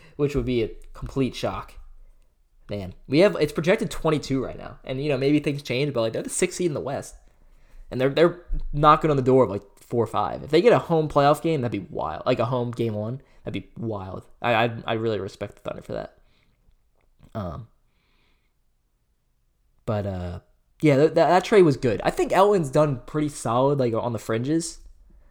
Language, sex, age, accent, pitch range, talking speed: English, male, 20-39, American, 100-140 Hz, 210 wpm